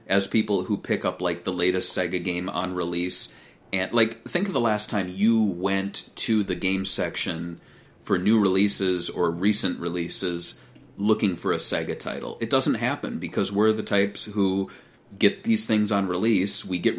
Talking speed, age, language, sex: 180 wpm, 30-49, English, male